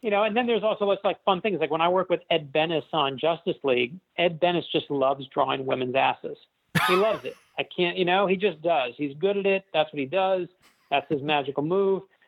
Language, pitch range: English, 140-190 Hz